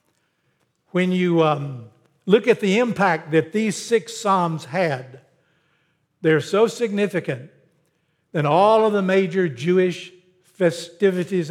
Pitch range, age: 150-185 Hz, 60-79